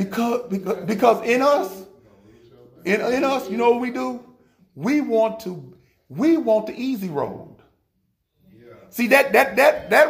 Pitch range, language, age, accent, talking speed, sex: 175-265 Hz, English, 40-59, American, 155 wpm, male